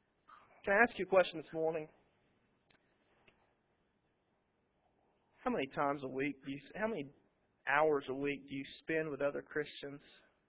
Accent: American